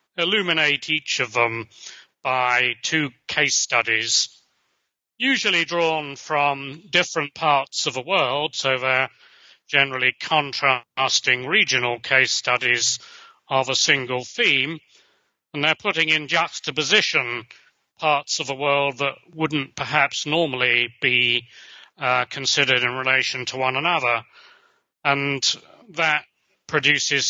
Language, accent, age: English, British, 40-59